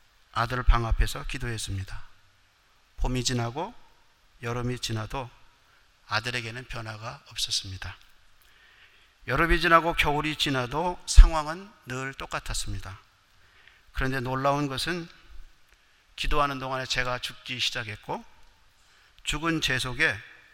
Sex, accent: male, native